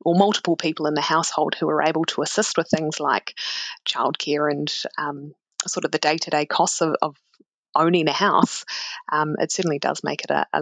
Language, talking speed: English, 210 wpm